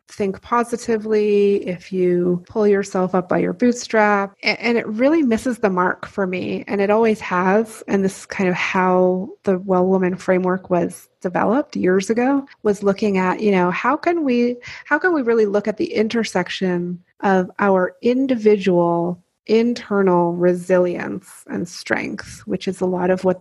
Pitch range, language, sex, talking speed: 180-225 Hz, English, female, 165 wpm